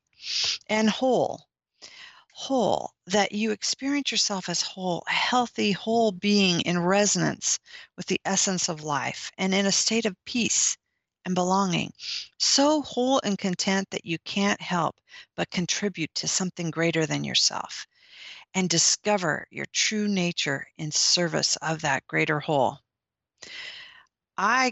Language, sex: English, female